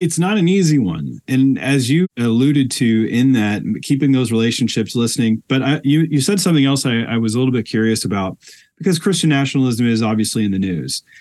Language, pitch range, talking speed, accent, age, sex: English, 115-140 Hz, 210 wpm, American, 30-49, male